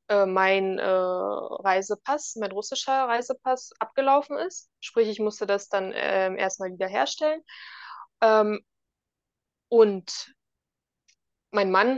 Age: 20-39